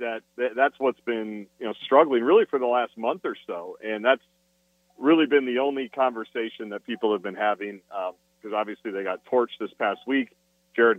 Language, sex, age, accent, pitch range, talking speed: English, male, 40-59, American, 110-135 Hz, 195 wpm